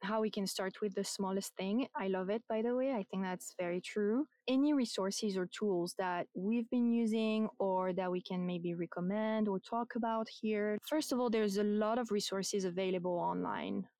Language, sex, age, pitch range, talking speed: English, female, 20-39, 185-215 Hz, 200 wpm